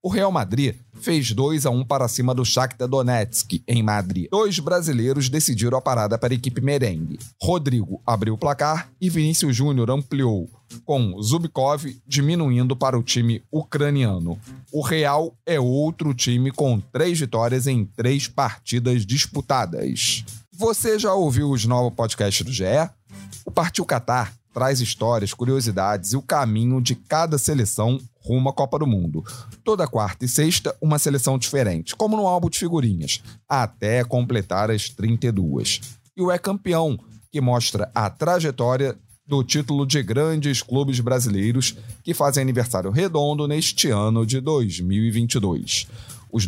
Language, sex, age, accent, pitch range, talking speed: Portuguese, male, 40-59, Brazilian, 115-145 Hz, 145 wpm